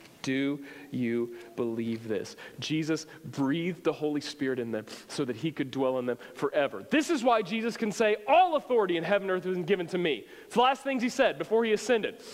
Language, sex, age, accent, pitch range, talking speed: English, male, 40-59, American, 125-165 Hz, 220 wpm